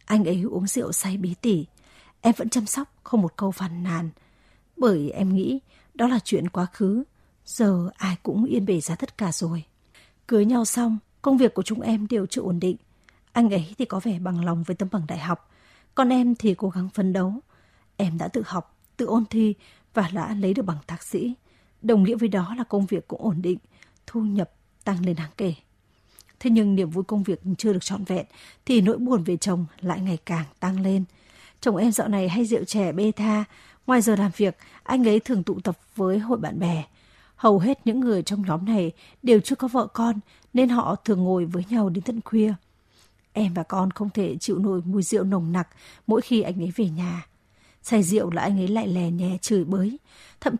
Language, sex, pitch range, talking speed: Vietnamese, female, 180-225 Hz, 220 wpm